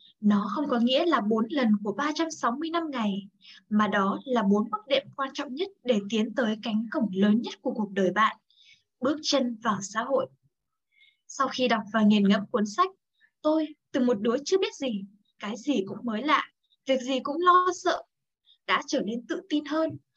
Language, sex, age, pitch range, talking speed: Vietnamese, female, 10-29, 210-295 Hz, 195 wpm